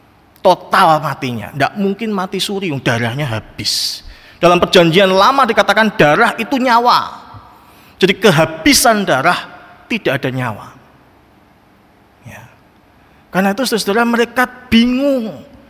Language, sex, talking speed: Indonesian, male, 105 wpm